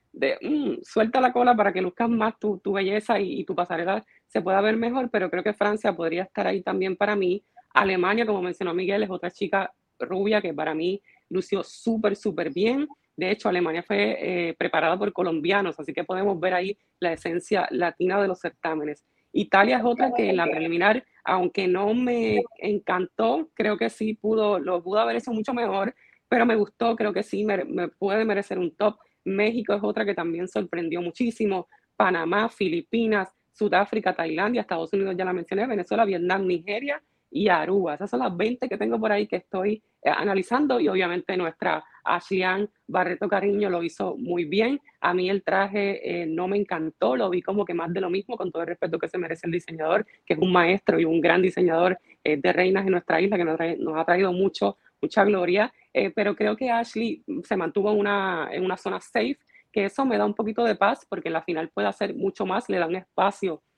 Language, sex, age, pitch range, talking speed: English, female, 20-39, 180-215 Hz, 205 wpm